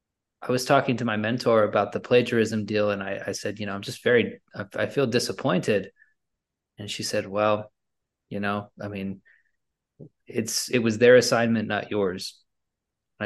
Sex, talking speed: male, 170 wpm